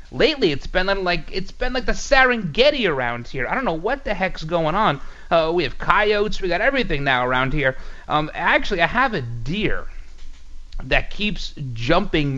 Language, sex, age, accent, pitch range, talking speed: English, male, 30-49, American, 130-200 Hz, 185 wpm